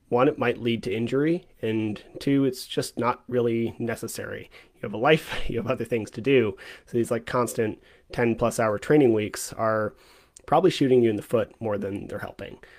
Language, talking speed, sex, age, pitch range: English, 200 wpm, male, 30-49, 110-125 Hz